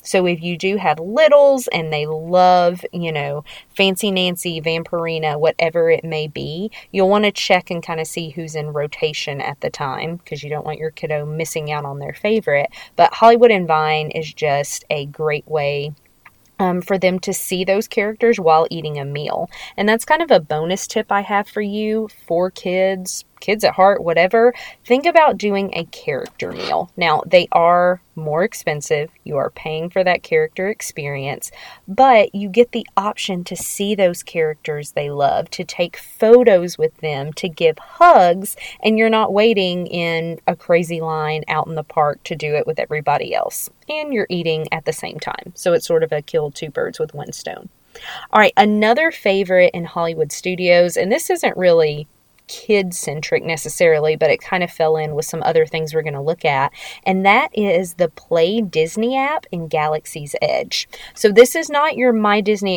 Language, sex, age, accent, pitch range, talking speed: English, female, 30-49, American, 155-210 Hz, 190 wpm